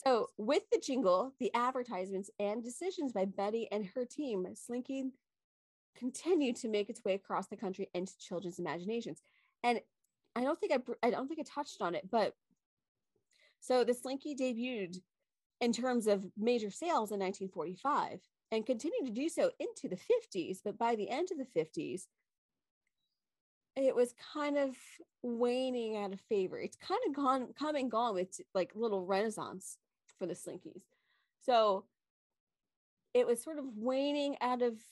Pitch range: 195-265 Hz